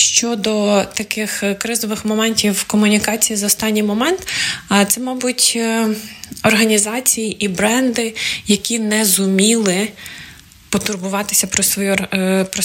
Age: 20-39